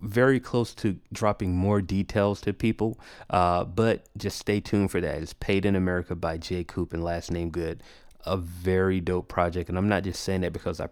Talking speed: 210 wpm